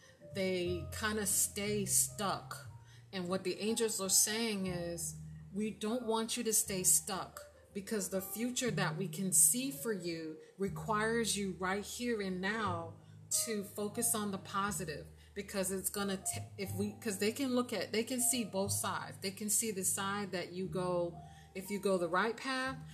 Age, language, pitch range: 30-49, English, 155-210 Hz